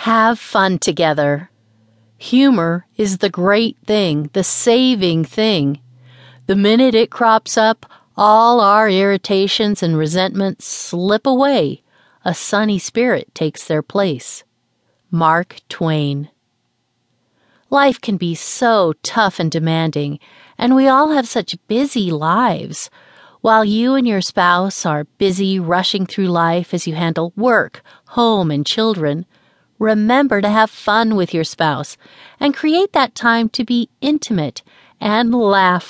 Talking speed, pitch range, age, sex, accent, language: 130 wpm, 165-235 Hz, 40-59, female, American, English